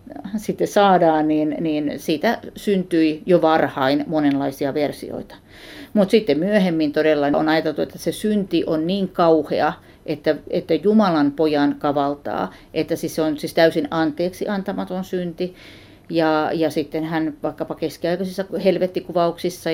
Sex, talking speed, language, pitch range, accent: female, 125 wpm, Finnish, 155-185 Hz, native